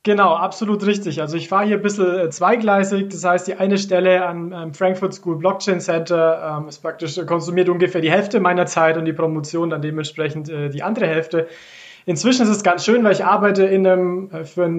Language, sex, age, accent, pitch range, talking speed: German, male, 20-39, German, 160-185 Hz, 205 wpm